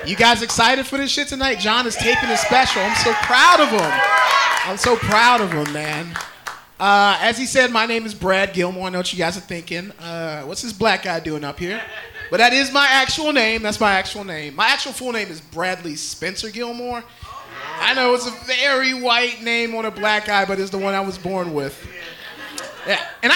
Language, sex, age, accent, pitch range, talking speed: English, male, 30-49, American, 185-260 Hz, 220 wpm